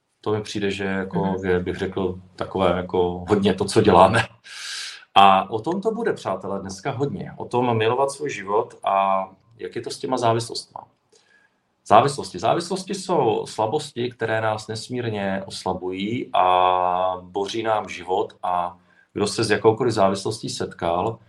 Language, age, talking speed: Czech, 40-59, 150 wpm